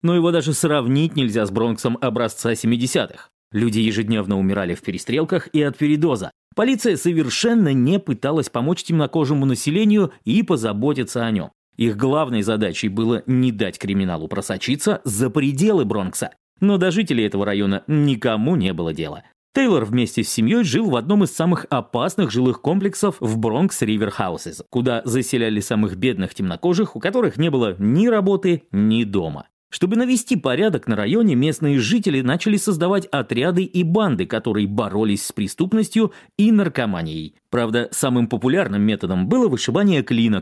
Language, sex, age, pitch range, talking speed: Russian, male, 30-49, 110-185 Hz, 150 wpm